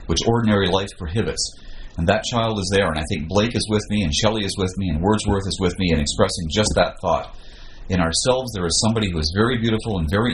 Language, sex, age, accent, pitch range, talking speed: English, male, 40-59, American, 85-110 Hz, 245 wpm